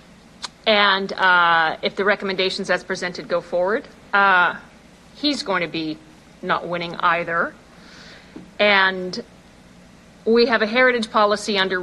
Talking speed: 120 wpm